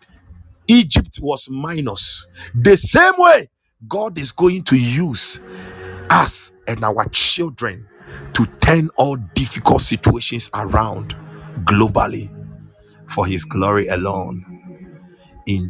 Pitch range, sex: 95-140 Hz, male